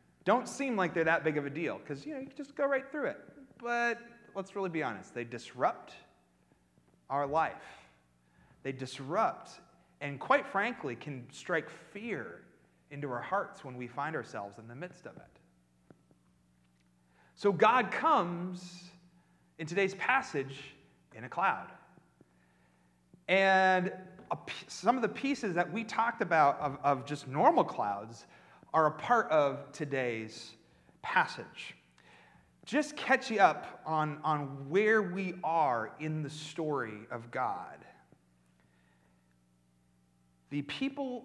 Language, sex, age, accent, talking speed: English, male, 30-49, American, 135 wpm